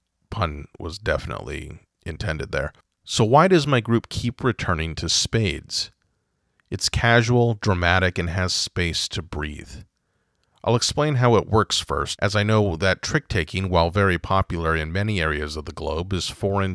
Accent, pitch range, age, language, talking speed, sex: American, 85-105 Hz, 30-49, English, 160 wpm, male